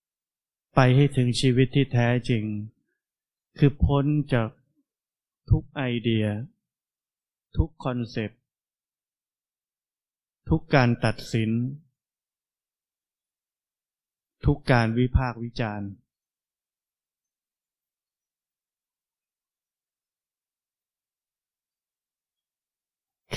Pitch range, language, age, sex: 115-145 Hz, Thai, 20-39, male